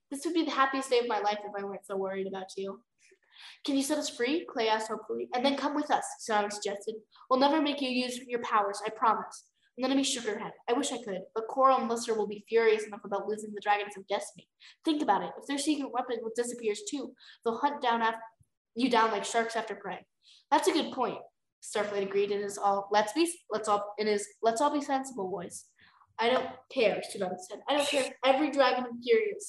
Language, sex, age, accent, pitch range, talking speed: English, female, 10-29, American, 210-275 Hz, 230 wpm